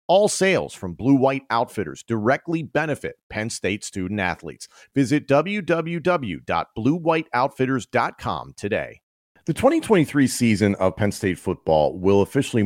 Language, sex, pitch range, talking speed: English, male, 85-115 Hz, 110 wpm